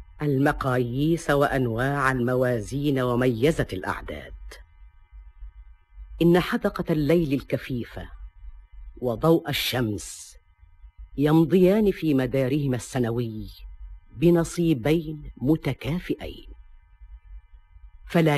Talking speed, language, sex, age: 60 wpm, Arabic, female, 40-59